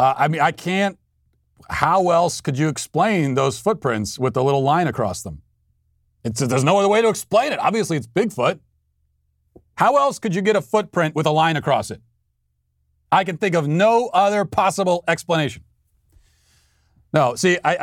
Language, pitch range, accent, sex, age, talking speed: English, 110-160 Hz, American, male, 40-59, 170 wpm